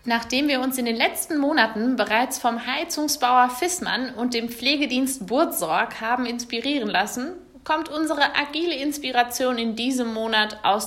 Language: German